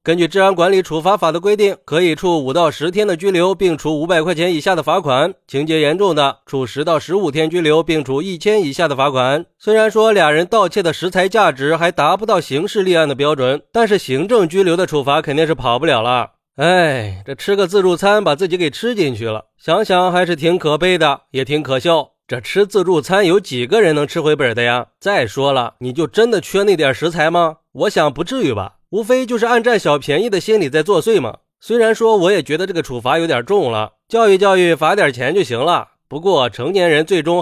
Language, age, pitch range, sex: Chinese, 30-49, 145-200 Hz, male